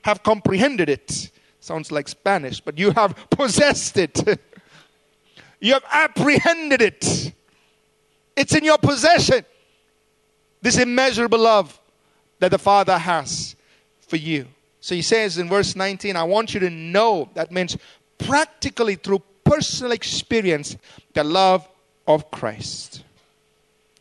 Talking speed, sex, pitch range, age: 120 wpm, male, 185-260 Hz, 40-59